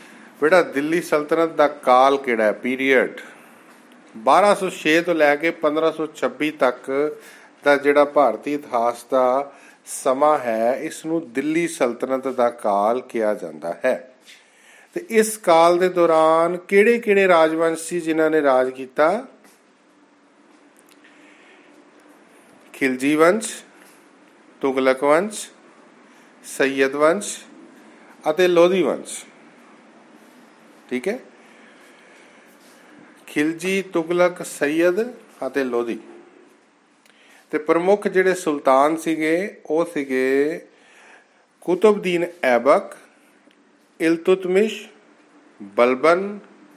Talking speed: 75 wpm